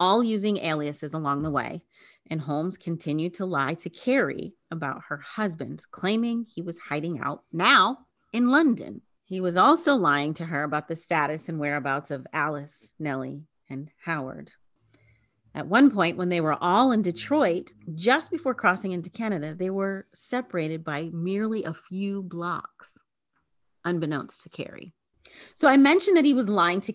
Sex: female